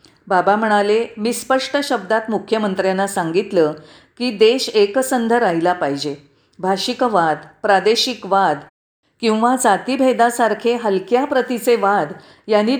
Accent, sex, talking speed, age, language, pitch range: native, female, 100 wpm, 40-59, Marathi, 175-245 Hz